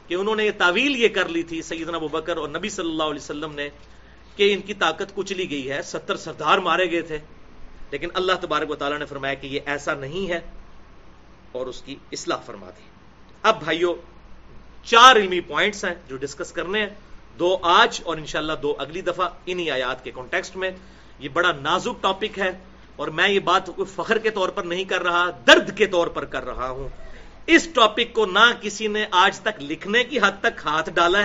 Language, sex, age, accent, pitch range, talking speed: English, male, 40-59, Indian, 165-220 Hz, 195 wpm